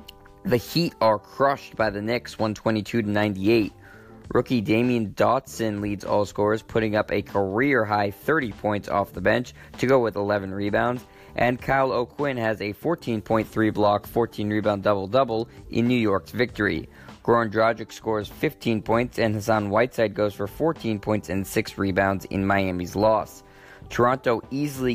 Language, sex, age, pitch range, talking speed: English, male, 20-39, 100-115 Hz, 145 wpm